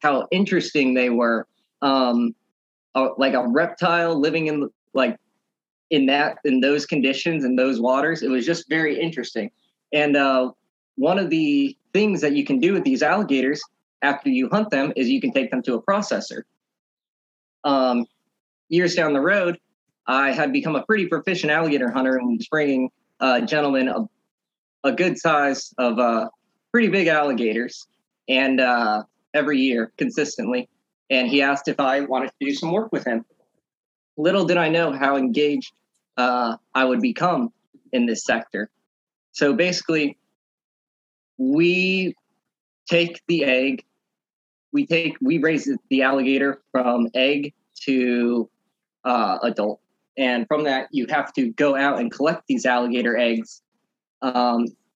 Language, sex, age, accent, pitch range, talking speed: English, male, 20-39, American, 130-185 Hz, 155 wpm